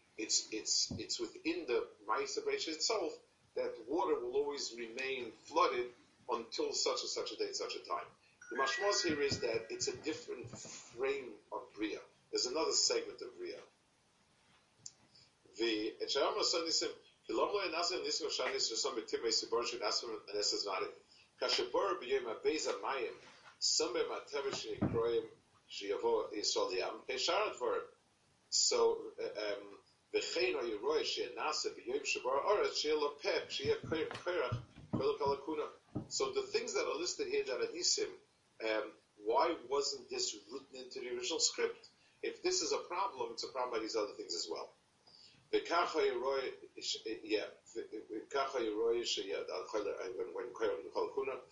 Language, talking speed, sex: English, 85 wpm, male